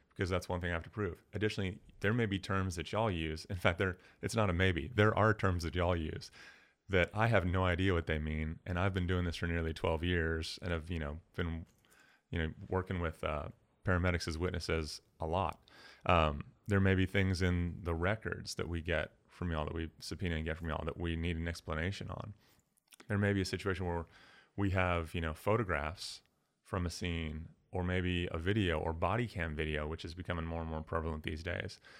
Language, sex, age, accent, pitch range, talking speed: English, male, 30-49, American, 85-100 Hz, 220 wpm